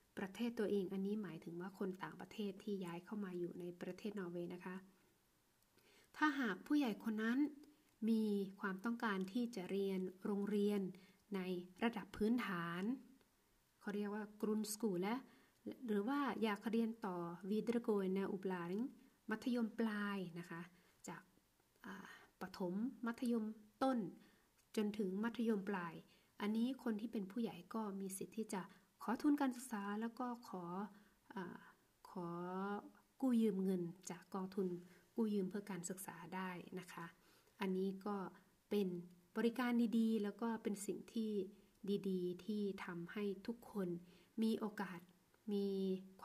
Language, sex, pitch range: Thai, female, 185-225 Hz